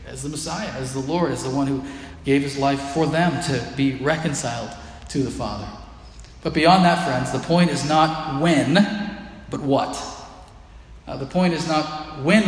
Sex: male